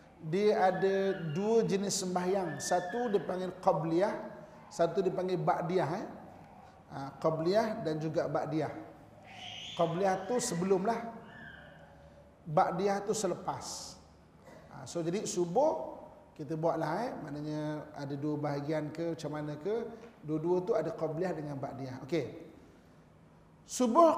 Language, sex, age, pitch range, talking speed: Malay, male, 30-49, 160-230 Hz, 115 wpm